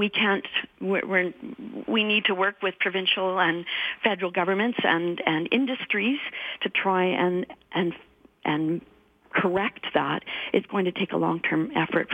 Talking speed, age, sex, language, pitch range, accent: 145 wpm, 50-69, female, English, 175-230 Hz, American